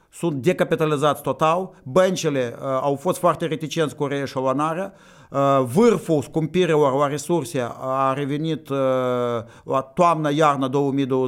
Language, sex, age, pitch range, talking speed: Romanian, male, 50-69, 135-165 Hz, 110 wpm